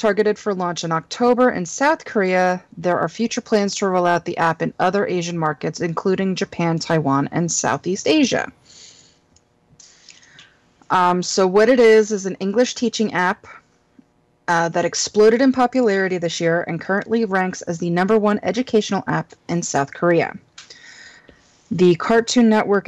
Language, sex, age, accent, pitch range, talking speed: English, female, 30-49, American, 175-220 Hz, 155 wpm